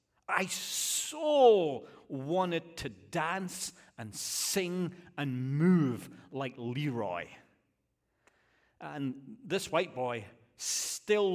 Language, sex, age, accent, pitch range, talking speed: English, male, 40-59, British, 120-155 Hz, 85 wpm